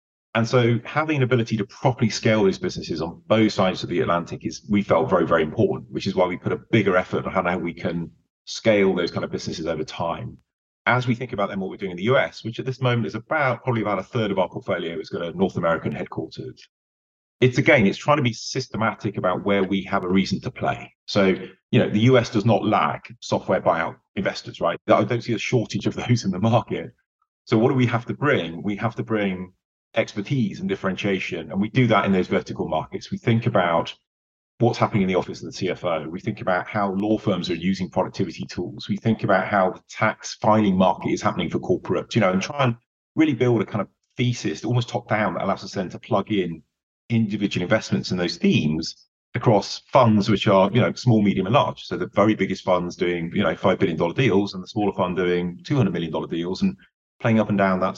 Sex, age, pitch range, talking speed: male, 30-49, 95-120 Hz, 235 wpm